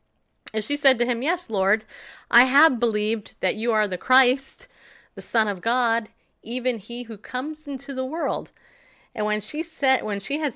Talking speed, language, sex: 190 wpm, English, female